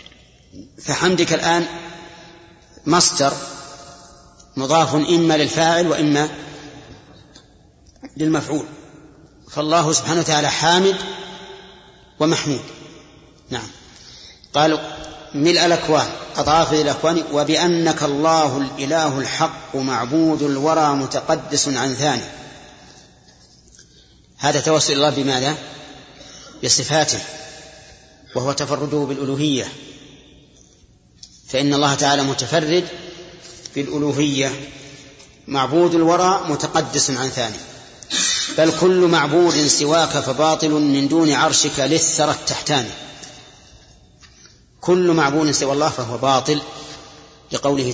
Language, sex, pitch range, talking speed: Arabic, male, 140-160 Hz, 80 wpm